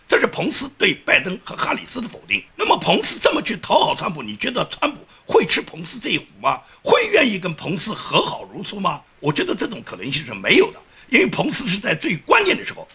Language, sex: Chinese, male